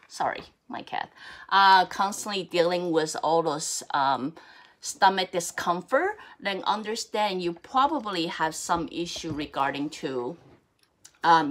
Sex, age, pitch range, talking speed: female, 30-49, 155-195 Hz, 115 wpm